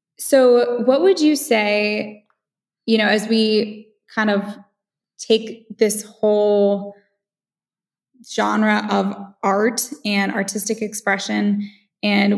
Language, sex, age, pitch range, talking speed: English, female, 10-29, 195-220 Hz, 100 wpm